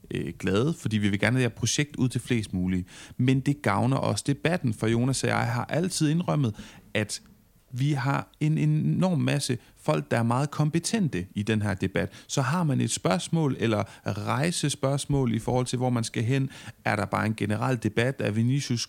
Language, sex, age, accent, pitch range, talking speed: Danish, male, 30-49, native, 110-145 Hz, 190 wpm